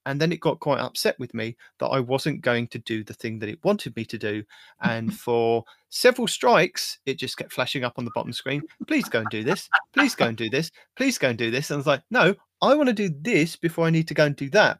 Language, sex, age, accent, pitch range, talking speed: English, male, 30-49, British, 115-150 Hz, 275 wpm